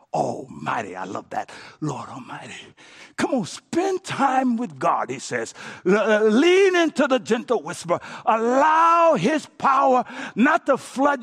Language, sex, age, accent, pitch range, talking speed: English, male, 60-79, American, 200-275 Hz, 145 wpm